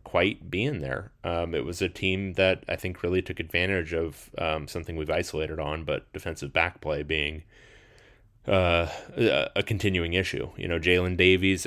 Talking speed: 170 wpm